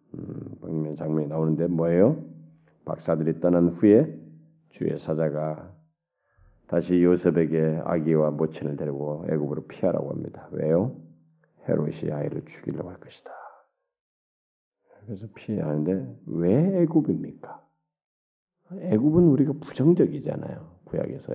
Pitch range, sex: 80-110 Hz, male